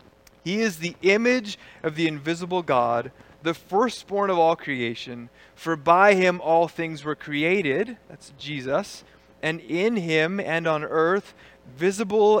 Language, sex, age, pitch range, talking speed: English, male, 20-39, 120-165 Hz, 140 wpm